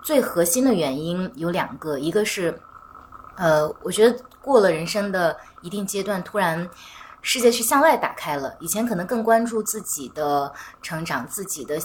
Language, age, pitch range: Chinese, 20-39, 165-225 Hz